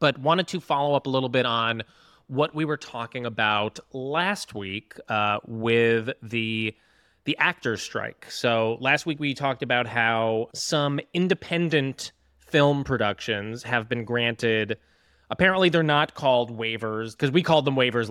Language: English